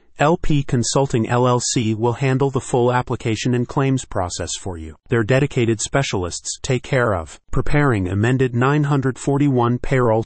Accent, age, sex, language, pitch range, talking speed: American, 40-59, male, English, 110-135 Hz, 135 wpm